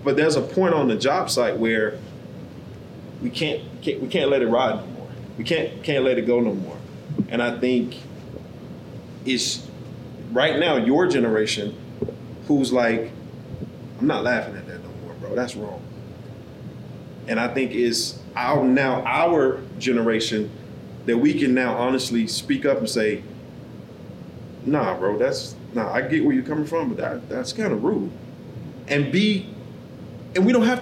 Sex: male